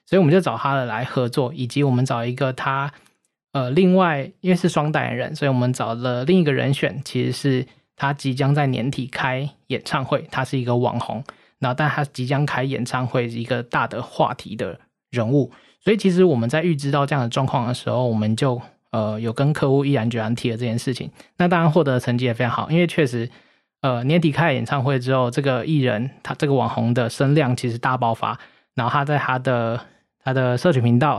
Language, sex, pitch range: Chinese, male, 120-145 Hz